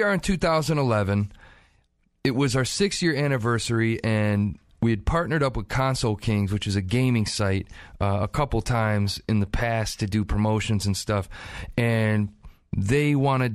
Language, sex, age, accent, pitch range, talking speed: English, male, 30-49, American, 100-120 Hz, 165 wpm